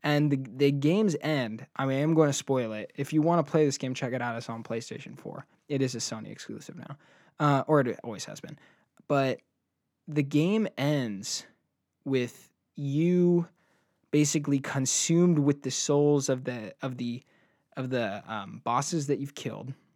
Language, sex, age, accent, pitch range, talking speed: English, male, 20-39, American, 130-155 Hz, 185 wpm